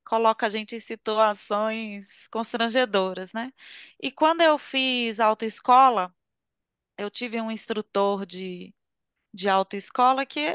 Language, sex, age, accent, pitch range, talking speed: Portuguese, female, 20-39, Brazilian, 205-260 Hz, 115 wpm